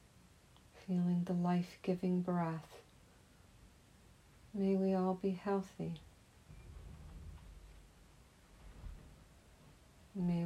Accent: American